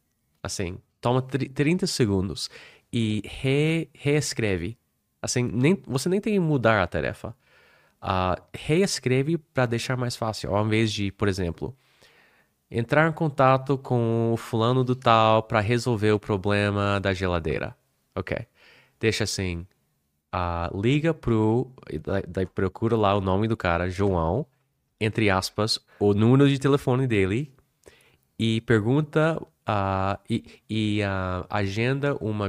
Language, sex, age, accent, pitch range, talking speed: Portuguese, male, 20-39, Brazilian, 100-130 Hz, 130 wpm